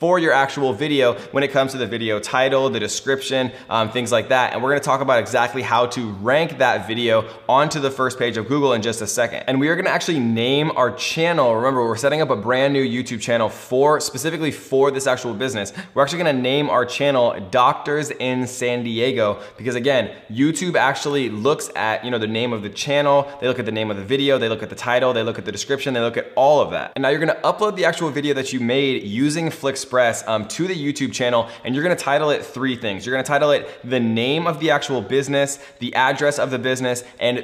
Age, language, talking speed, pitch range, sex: 20-39, English, 240 wpm, 115-140 Hz, male